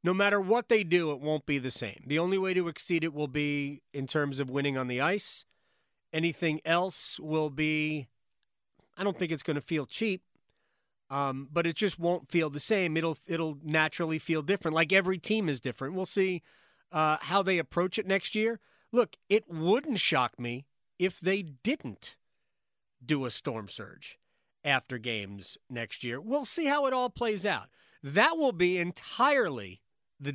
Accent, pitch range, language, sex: American, 140-200 Hz, English, male